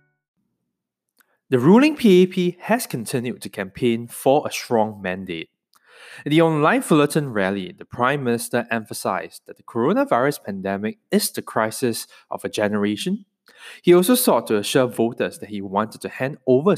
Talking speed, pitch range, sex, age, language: 150 wpm, 105-160 Hz, male, 20-39, English